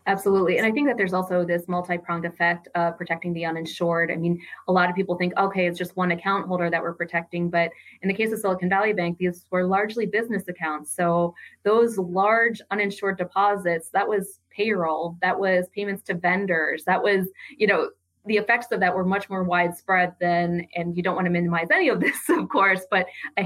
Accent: American